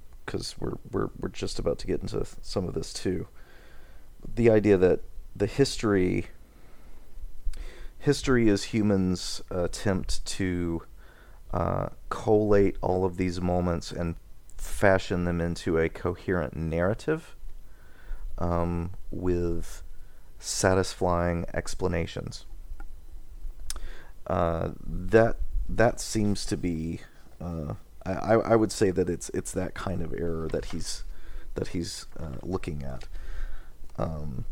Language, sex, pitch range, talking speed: English, male, 75-95 Hz, 115 wpm